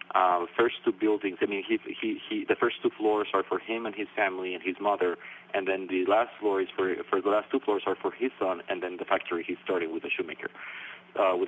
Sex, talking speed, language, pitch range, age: male, 250 wpm, English, 285-385 Hz, 40-59